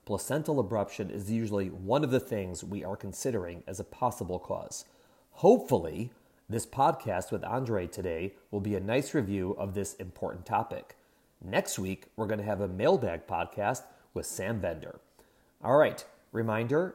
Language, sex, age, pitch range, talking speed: English, male, 30-49, 95-120 Hz, 160 wpm